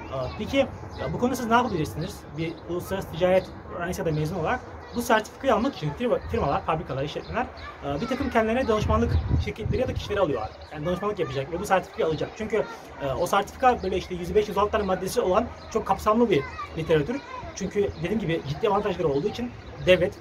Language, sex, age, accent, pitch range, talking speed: Turkish, male, 30-49, native, 175-235 Hz, 165 wpm